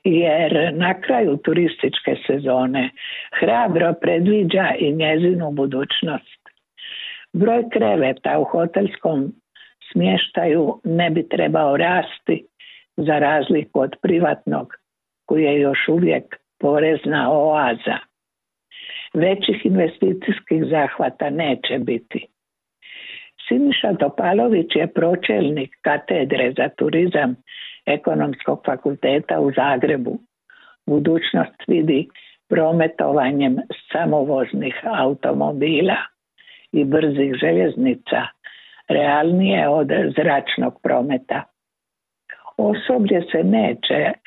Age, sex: 60-79, female